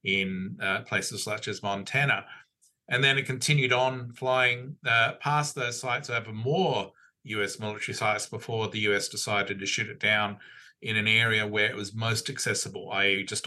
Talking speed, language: 175 wpm, English